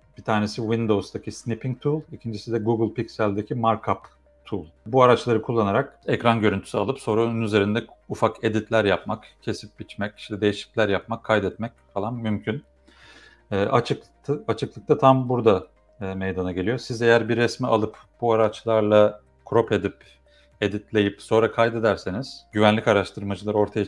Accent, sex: native, male